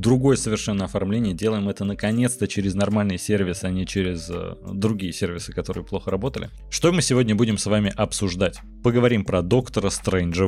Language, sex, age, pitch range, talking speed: Russian, male, 30-49, 95-115 Hz, 165 wpm